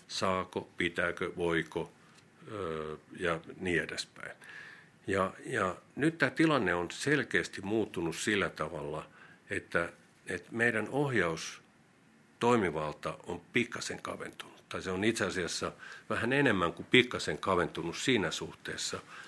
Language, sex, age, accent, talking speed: Finnish, male, 50-69, native, 110 wpm